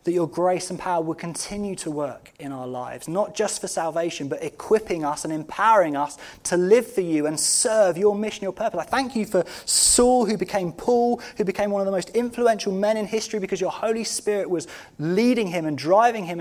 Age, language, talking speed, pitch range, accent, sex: 20-39, English, 220 wpm, 155-215 Hz, British, male